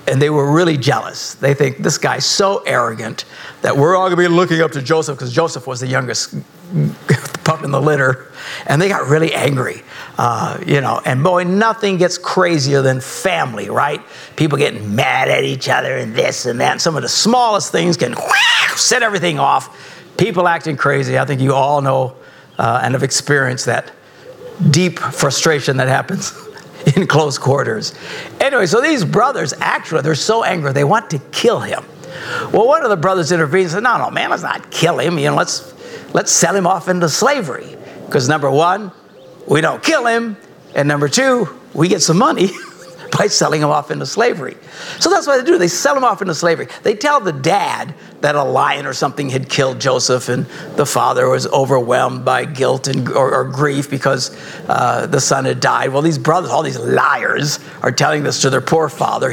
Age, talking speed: 60-79, 195 wpm